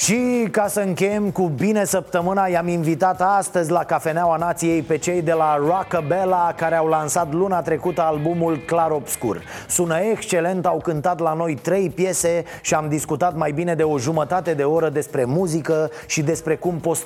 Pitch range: 145-170 Hz